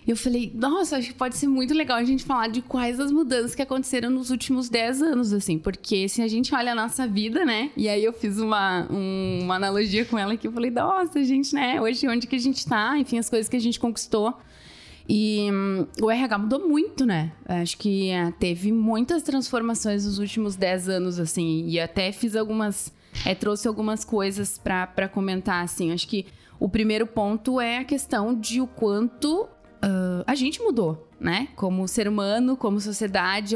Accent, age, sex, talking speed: Brazilian, 20-39, female, 200 wpm